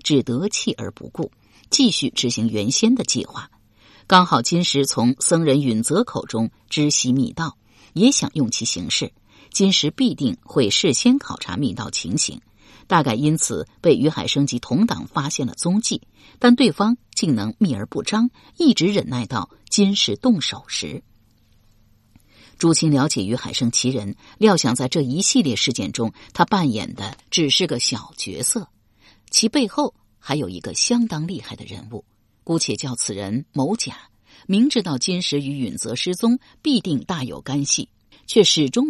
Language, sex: Chinese, female